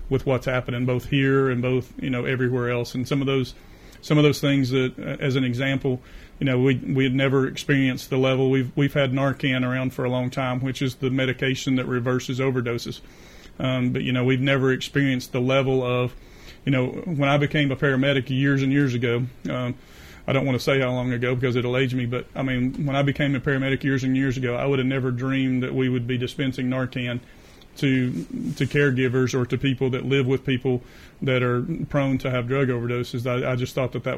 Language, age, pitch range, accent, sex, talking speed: English, 30-49, 125-135 Hz, American, male, 225 wpm